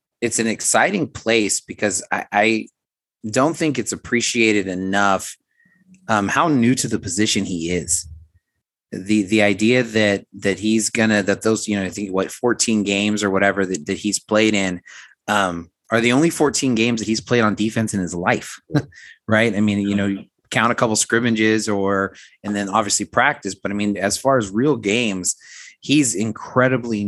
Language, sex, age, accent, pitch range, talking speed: English, male, 30-49, American, 100-115 Hz, 185 wpm